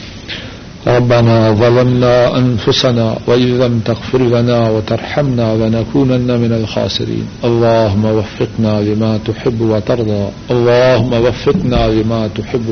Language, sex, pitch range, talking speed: Urdu, male, 115-125 Hz, 115 wpm